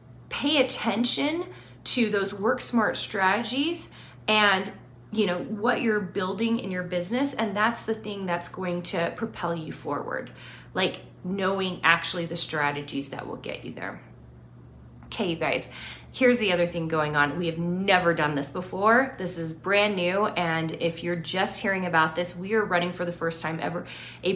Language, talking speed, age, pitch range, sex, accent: English, 175 wpm, 30-49, 165-210 Hz, female, American